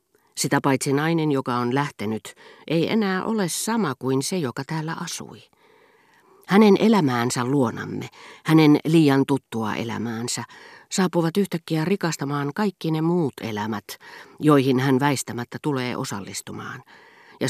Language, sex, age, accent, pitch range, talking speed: Finnish, female, 40-59, native, 120-165 Hz, 120 wpm